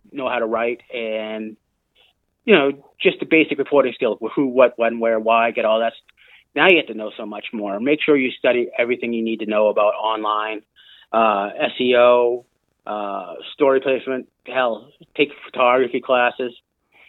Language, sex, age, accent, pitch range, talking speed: English, male, 30-49, American, 110-130 Hz, 170 wpm